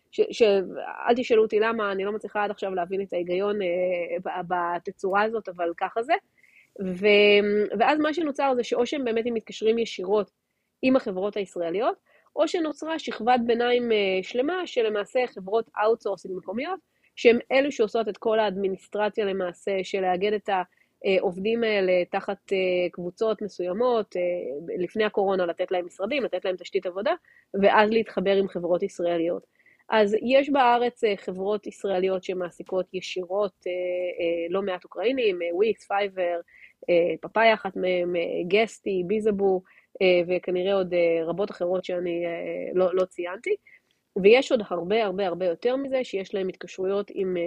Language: Hebrew